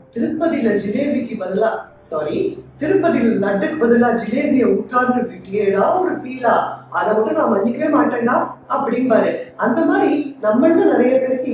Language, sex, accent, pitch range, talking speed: Tamil, female, native, 215-310 Hz, 60 wpm